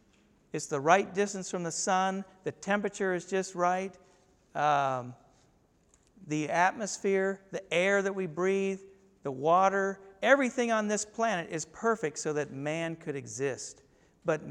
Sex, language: male, English